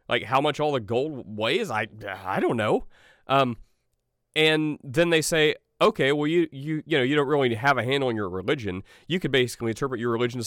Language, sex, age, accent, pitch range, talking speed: English, male, 30-49, American, 115-140 Hz, 220 wpm